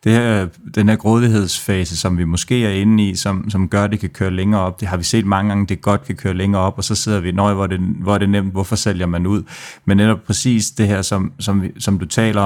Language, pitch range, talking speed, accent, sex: Danish, 95-105 Hz, 270 wpm, native, male